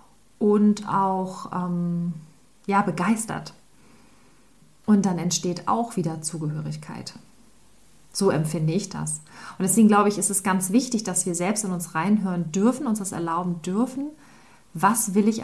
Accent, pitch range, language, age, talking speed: German, 175-225 Hz, German, 30-49, 145 wpm